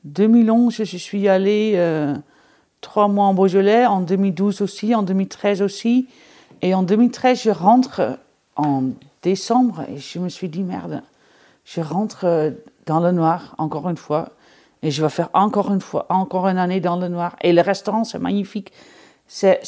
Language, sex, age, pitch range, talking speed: French, female, 40-59, 170-215 Hz, 170 wpm